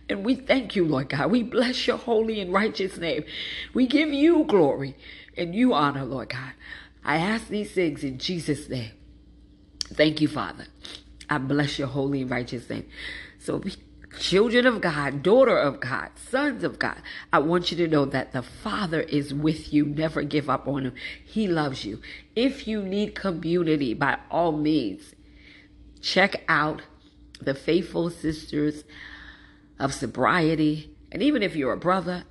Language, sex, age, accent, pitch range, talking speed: English, female, 40-59, American, 145-205 Hz, 165 wpm